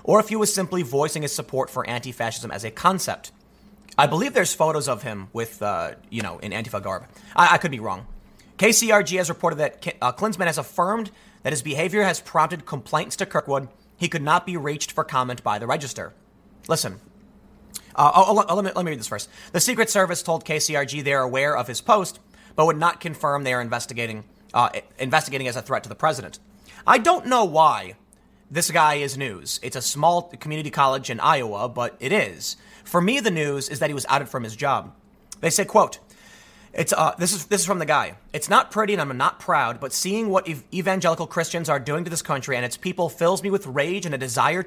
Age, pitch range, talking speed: 30-49, 130-190 Hz, 220 wpm